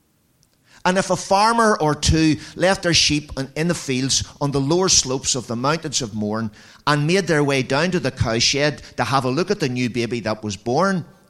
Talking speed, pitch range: 220 wpm, 130-180 Hz